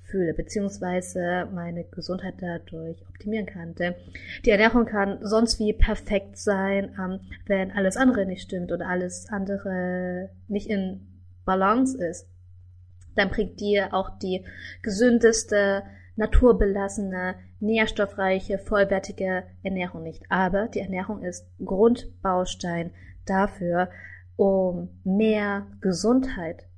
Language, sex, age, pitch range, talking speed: German, female, 20-39, 170-205 Hz, 105 wpm